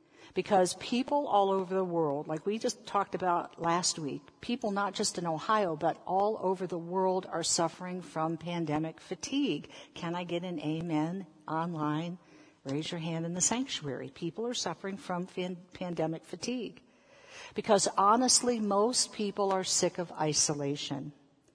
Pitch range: 155-200 Hz